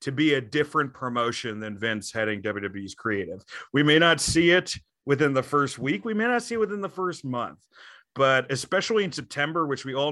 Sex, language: male, English